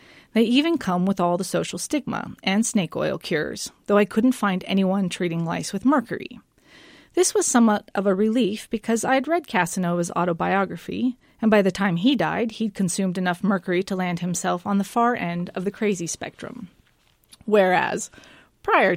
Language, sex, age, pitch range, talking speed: English, female, 30-49, 185-230 Hz, 175 wpm